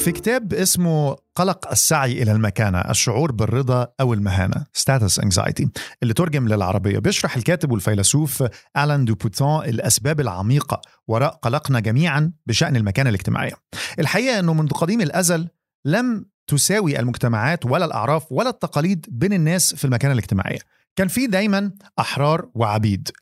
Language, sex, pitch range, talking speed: Arabic, male, 115-155 Hz, 135 wpm